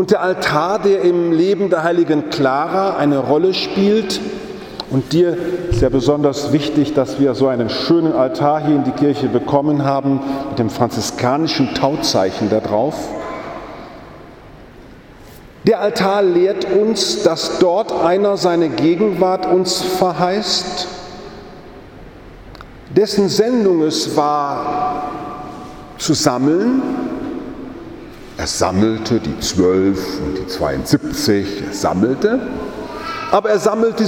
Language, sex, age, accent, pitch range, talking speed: German, male, 50-69, German, 145-205 Hz, 115 wpm